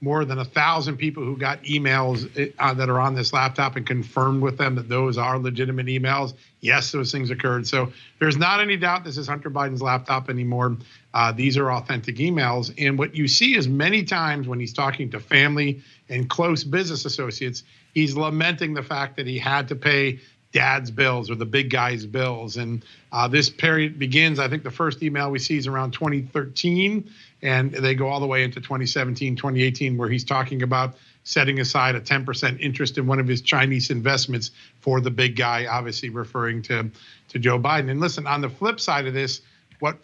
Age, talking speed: 50-69, 200 wpm